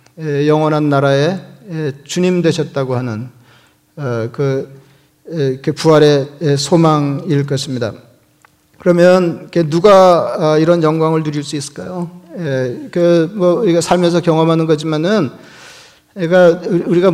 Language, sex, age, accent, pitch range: Korean, male, 40-59, native, 145-170 Hz